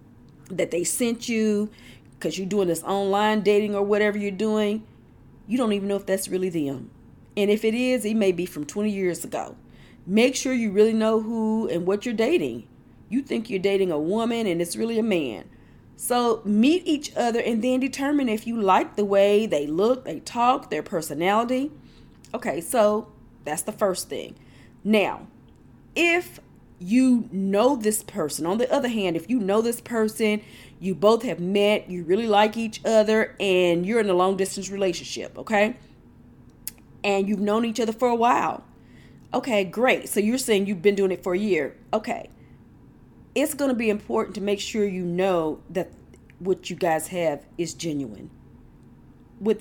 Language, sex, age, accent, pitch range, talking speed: English, female, 40-59, American, 175-225 Hz, 180 wpm